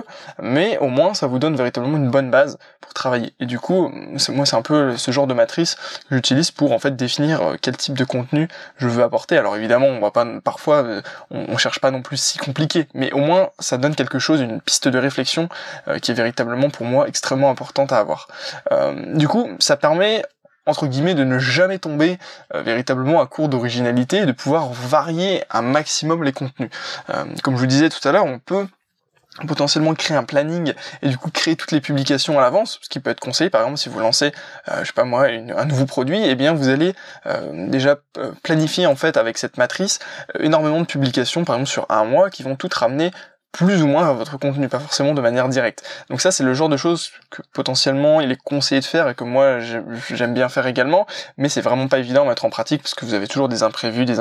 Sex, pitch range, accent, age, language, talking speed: male, 130-165 Hz, French, 20-39, French, 230 wpm